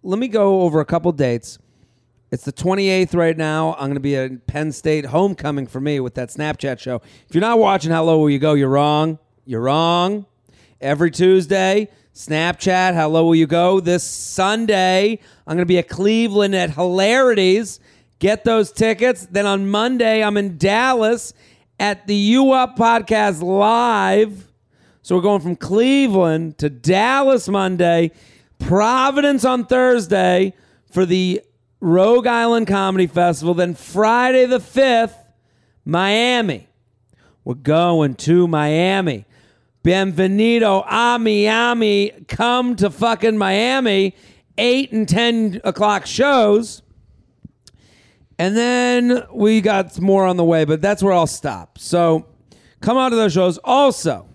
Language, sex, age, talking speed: English, male, 40-59, 145 wpm